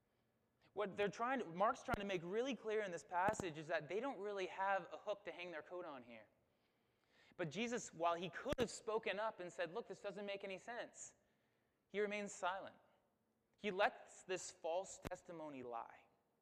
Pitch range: 160-215 Hz